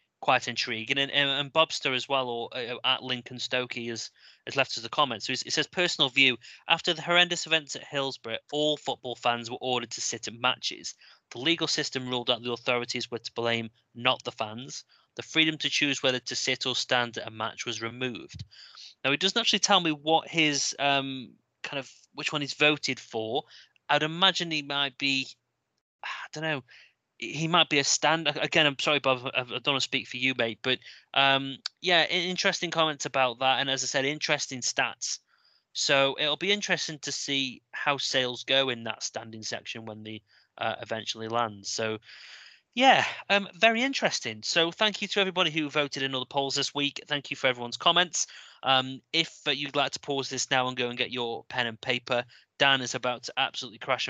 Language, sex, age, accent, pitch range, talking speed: English, male, 30-49, British, 125-150 Hz, 205 wpm